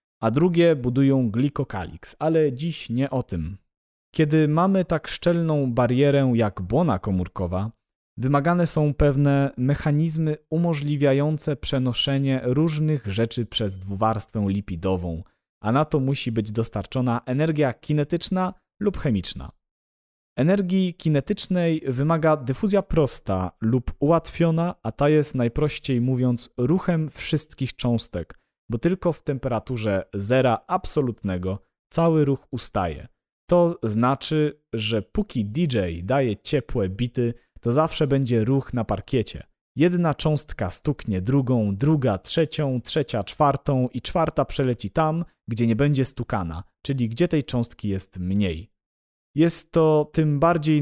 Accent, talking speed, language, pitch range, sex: native, 120 wpm, Polish, 110-155 Hz, male